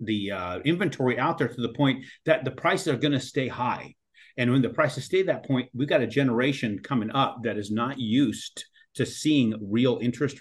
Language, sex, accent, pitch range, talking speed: English, male, American, 115-145 Hz, 215 wpm